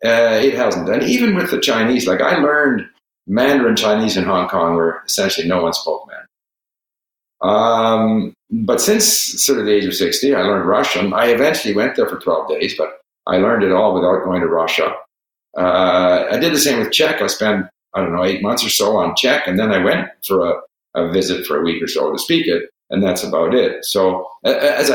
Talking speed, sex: 215 wpm, male